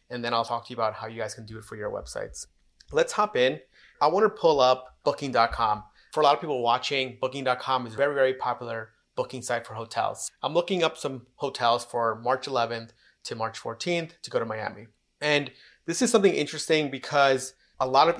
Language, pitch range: English, 125-145 Hz